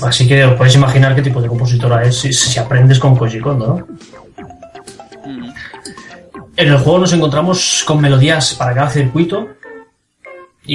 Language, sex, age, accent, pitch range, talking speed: Spanish, male, 20-39, Spanish, 120-140 Hz, 155 wpm